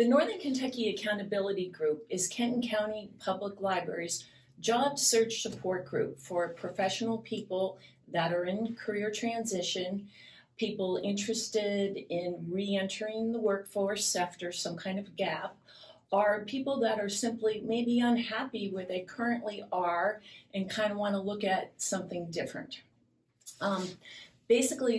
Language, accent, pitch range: English, American, 180-215 Hz